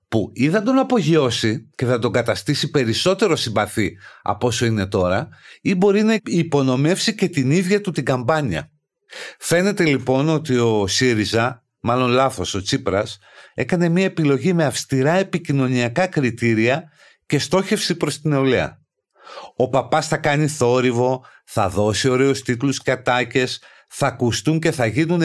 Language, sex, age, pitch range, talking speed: Greek, male, 50-69, 120-165 Hz, 145 wpm